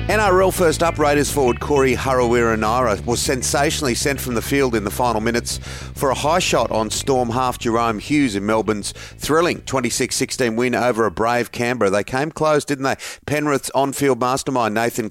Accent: Australian